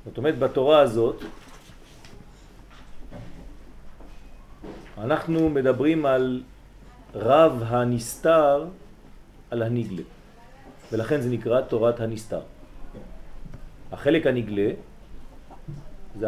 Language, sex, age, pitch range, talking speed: French, male, 40-59, 115-145 Hz, 65 wpm